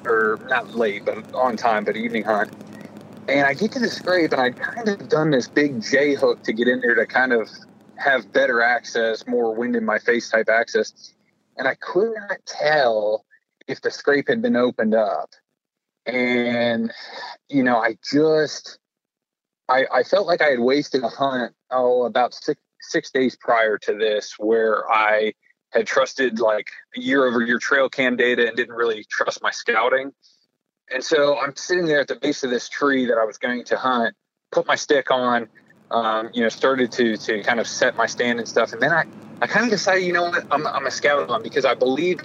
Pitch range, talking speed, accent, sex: 120-145 Hz, 205 wpm, American, male